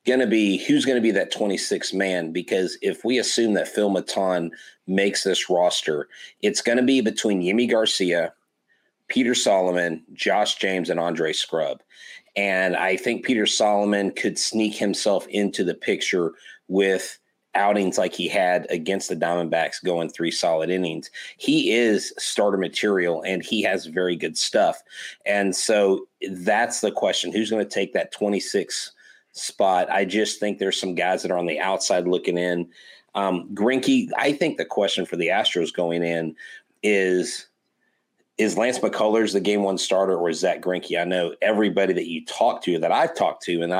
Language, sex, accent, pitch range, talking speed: English, male, American, 90-105 Hz, 175 wpm